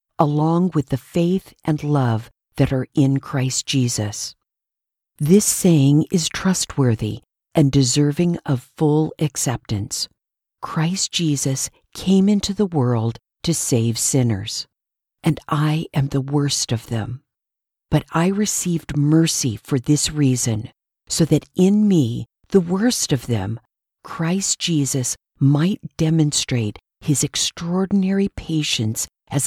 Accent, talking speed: American, 120 wpm